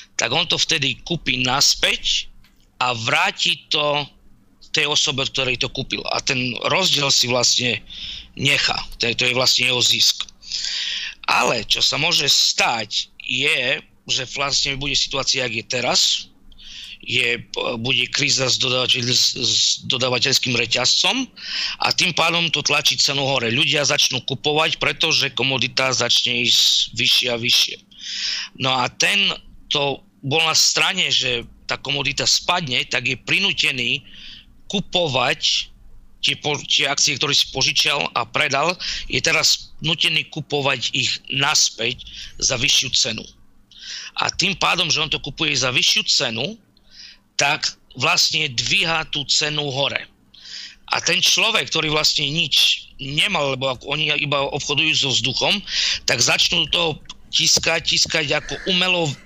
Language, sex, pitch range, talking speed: Slovak, male, 125-155 Hz, 130 wpm